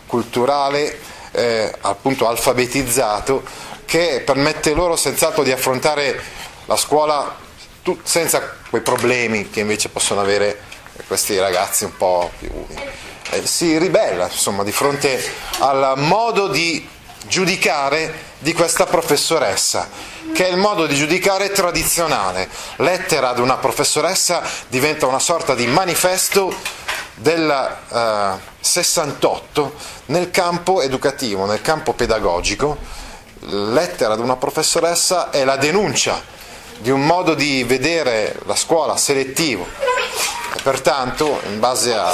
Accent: native